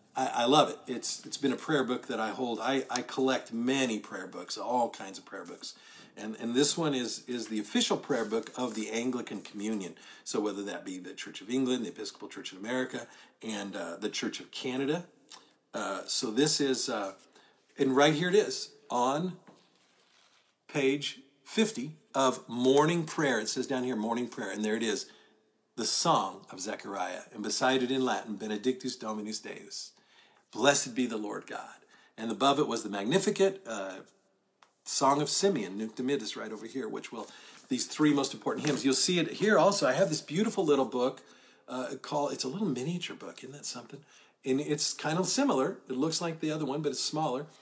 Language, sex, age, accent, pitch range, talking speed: English, male, 40-59, American, 110-150 Hz, 195 wpm